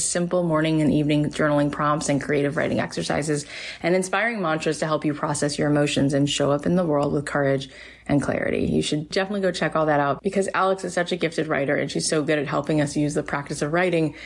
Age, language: 20-39, English